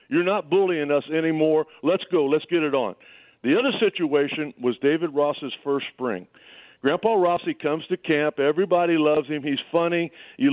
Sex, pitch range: male, 140-180 Hz